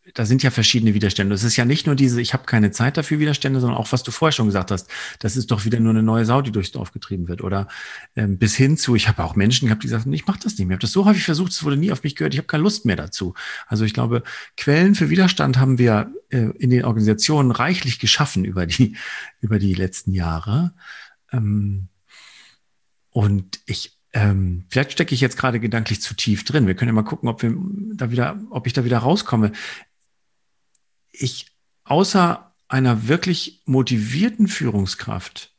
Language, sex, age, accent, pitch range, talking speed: German, male, 40-59, German, 110-145 Hz, 210 wpm